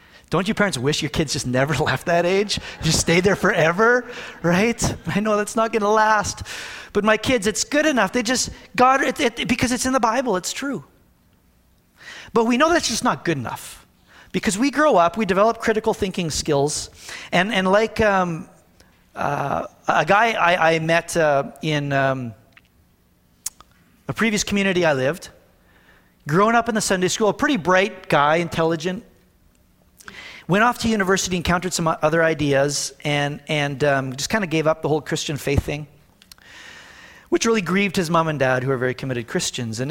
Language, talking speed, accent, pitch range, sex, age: English, 180 wpm, American, 140-215 Hz, male, 40-59